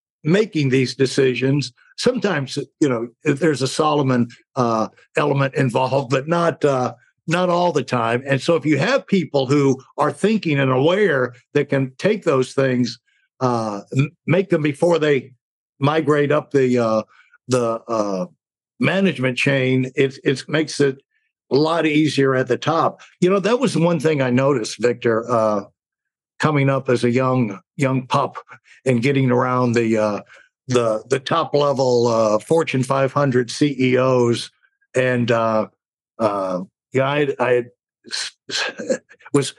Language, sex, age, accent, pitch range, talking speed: English, male, 60-79, American, 125-155 Hz, 145 wpm